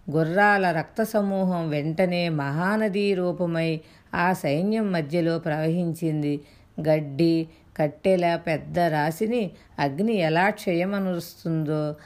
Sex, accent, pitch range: female, native, 155-175 Hz